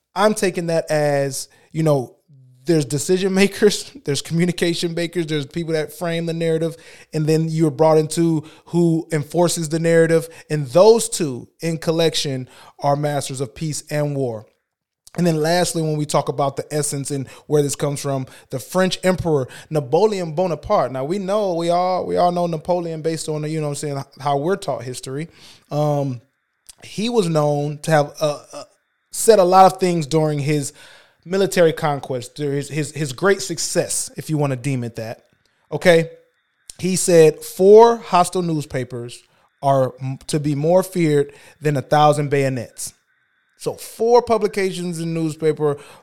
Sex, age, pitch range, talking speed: male, 20-39, 145-175 Hz, 165 wpm